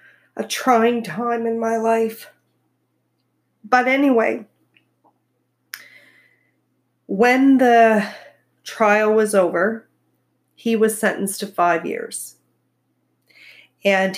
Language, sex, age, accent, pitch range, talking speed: English, female, 40-59, American, 165-205 Hz, 85 wpm